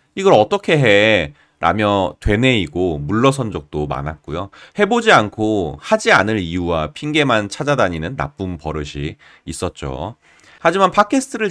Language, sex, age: Korean, male, 30-49